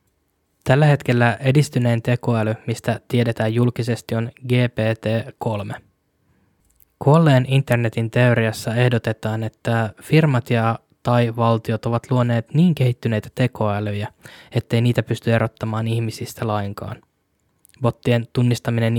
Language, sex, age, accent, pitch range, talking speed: Finnish, male, 10-29, native, 115-125 Hz, 100 wpm